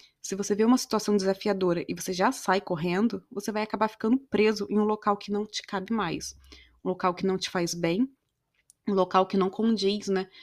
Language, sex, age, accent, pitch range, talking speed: Portuguese, female, 20-39, Brazilian, 195-240 Hz, 215 wpm